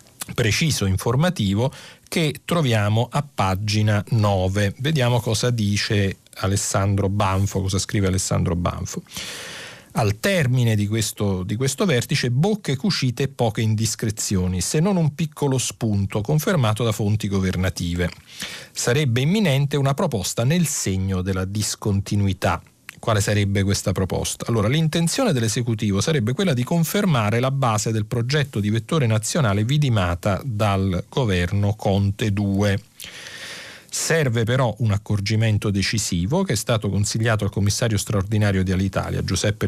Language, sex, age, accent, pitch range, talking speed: Italian, male, 40-59, native, 100-135 Hz, 125 wpm